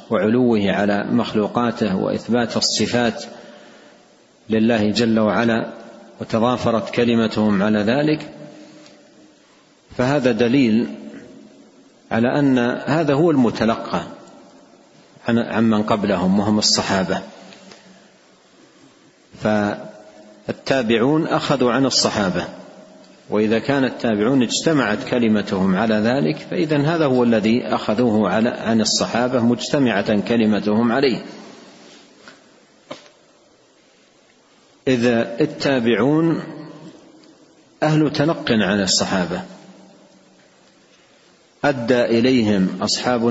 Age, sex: 50-69, male